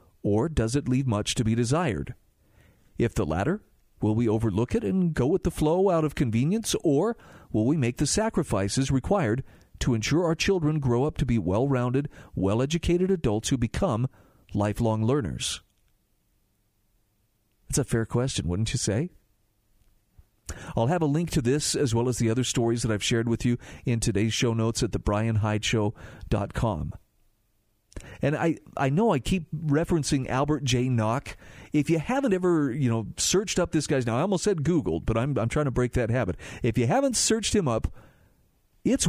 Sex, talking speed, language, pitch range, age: male, 175 wpm, English, 110-155 Hz, 40-59